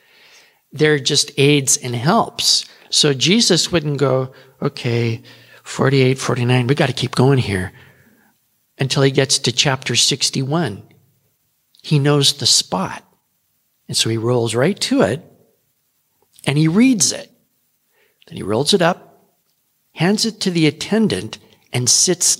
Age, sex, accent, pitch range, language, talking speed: 50-69, male, American, 130-195 Hz, English, 135 wpm